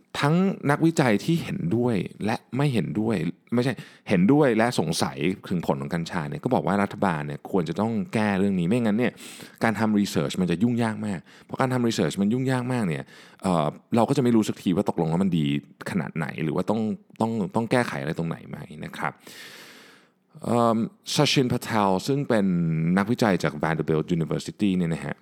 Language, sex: Thai, male